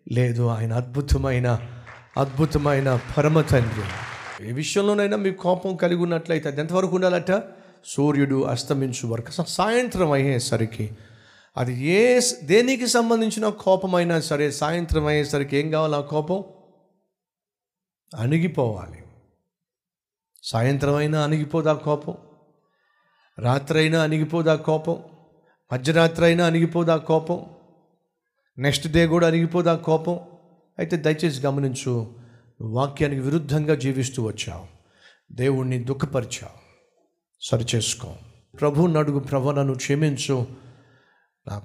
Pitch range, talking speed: 130-170 Hz, 90 wpm